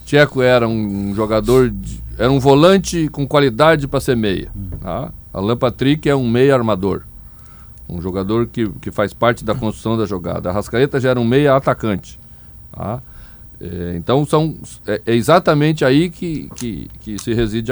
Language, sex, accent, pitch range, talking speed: Portuguese, male, Brazilian, 105-135 Hz, 170 wpm